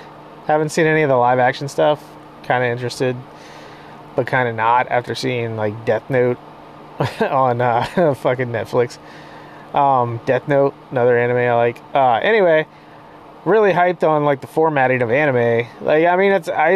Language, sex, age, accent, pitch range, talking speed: English, male, 30-49, American, 125-155 Hz, 160 wpm